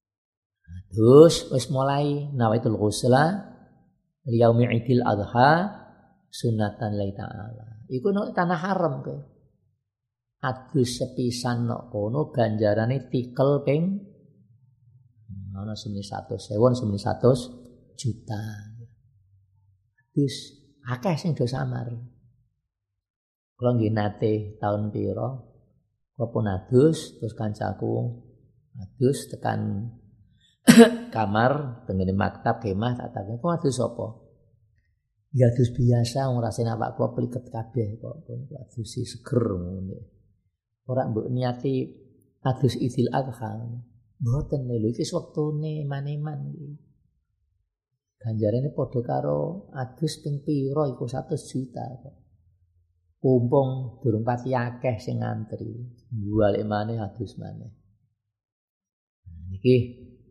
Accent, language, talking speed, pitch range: native, Indonesian, 60 wpm, 105-130 Hz